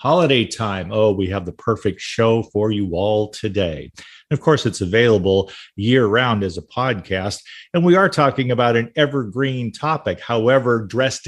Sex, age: male, 40-59